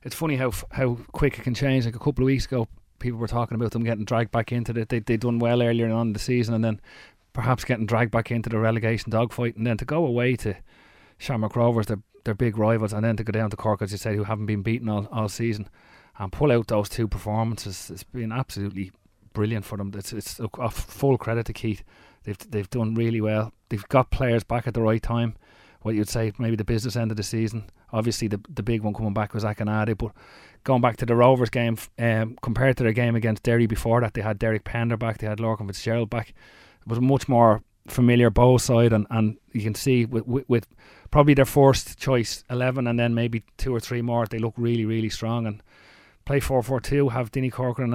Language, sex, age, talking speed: English, male, 30-49, 240 wpm